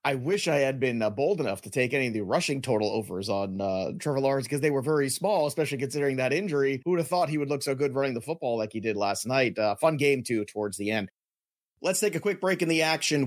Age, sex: 30-49, male